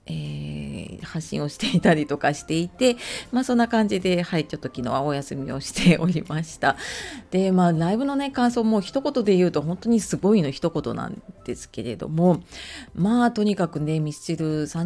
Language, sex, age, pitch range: Japanese, female, 30-49, 150-210 Hz